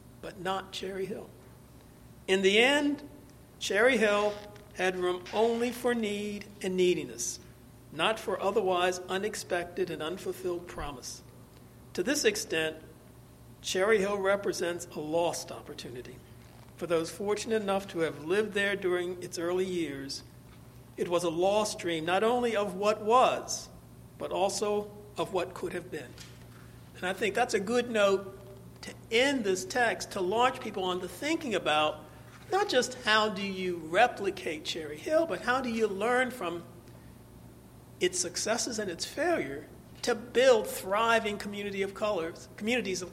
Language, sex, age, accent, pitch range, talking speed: English, male, 60-79, American, 180-245 Hz, 145 wpm